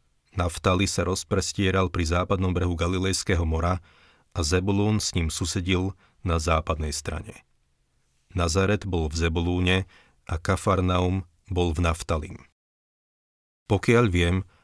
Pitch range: 85-100 Hz